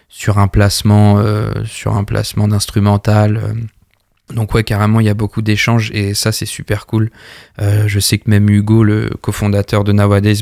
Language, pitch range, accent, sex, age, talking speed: French, 100-110 Hz, French, male, 20-39, 180 wpm